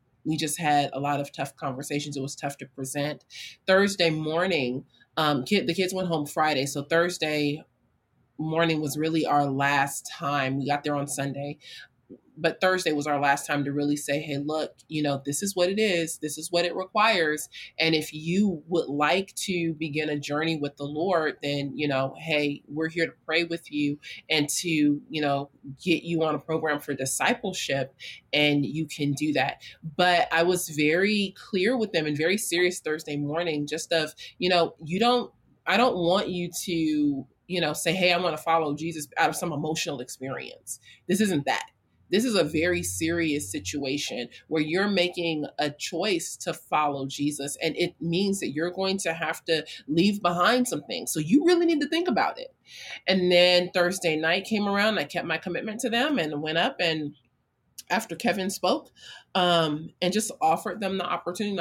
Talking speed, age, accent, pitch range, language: 190 wpm, 30-49, American, 145-180 Hz, English